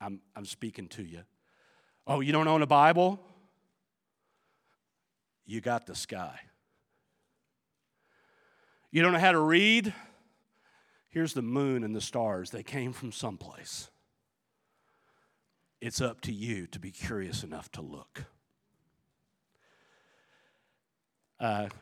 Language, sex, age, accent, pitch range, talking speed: English, male, 50-69, American, 135-180 Hz, 115 wpm